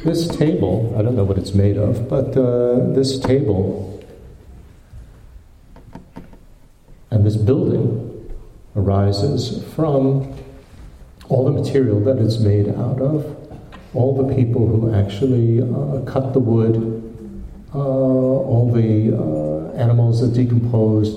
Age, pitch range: 50-69, 105-130 Hz